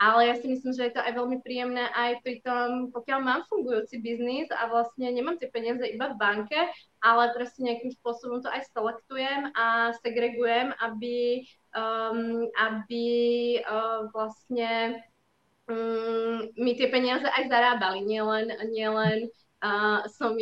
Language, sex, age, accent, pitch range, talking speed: Czech, female, 20-39, native, 225-240 Hz, 140 wpm